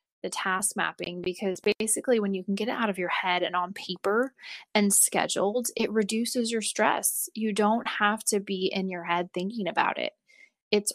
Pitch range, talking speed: 185-220 Hz, 190 wpm